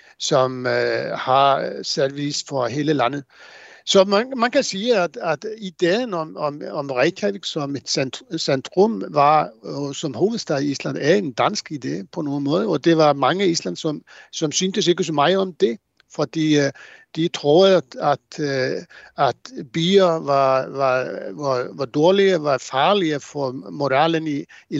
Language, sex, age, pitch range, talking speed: Danish, male, 60-79, 135-170 Hz, 160 wpm